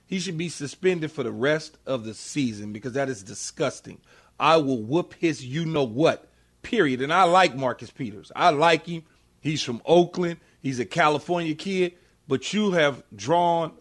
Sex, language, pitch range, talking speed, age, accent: male, English, 135-195 Hz, 170 wpm, 40-59, American